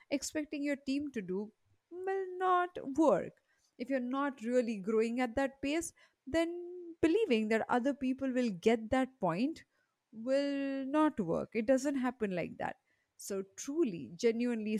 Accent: Indian